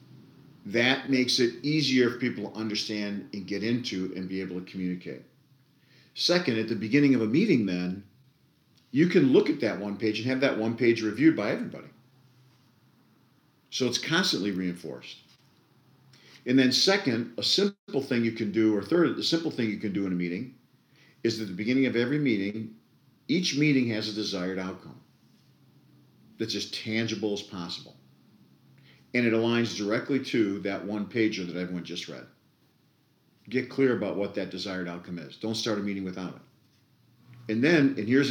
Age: 50-69